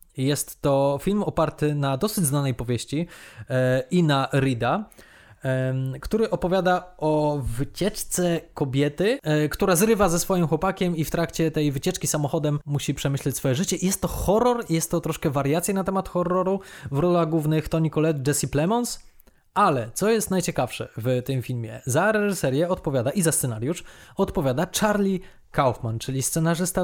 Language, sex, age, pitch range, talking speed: Polish, male, 20-39, 140-175 Hz, 150 wpm